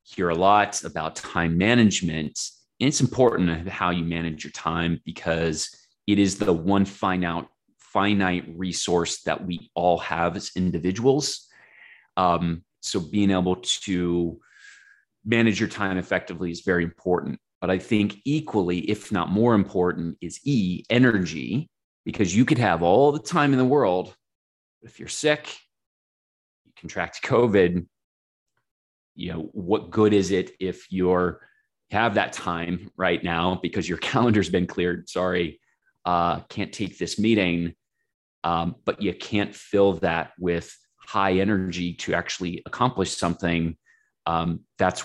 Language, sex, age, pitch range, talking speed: English, male, 30-49, 85-100 Hz, 140 wpm